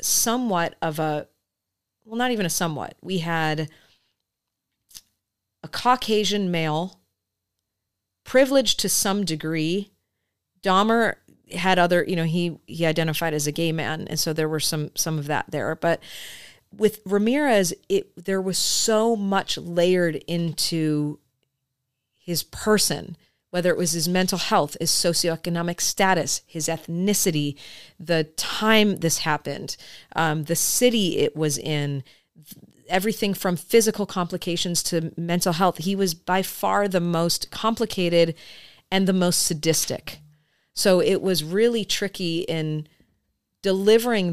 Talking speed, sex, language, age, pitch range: 130 wpm, female, English, 40-59, 155-195 Hz